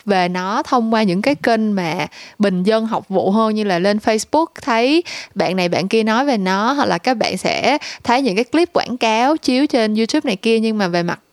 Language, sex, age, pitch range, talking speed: Vietnamese, female, 20-39, 195-265 Hz, 240 wpm